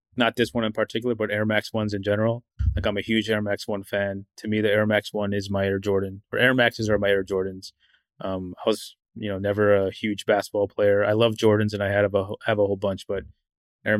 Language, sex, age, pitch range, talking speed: English, male, 20-39, 100-110 Hz, 255 wpm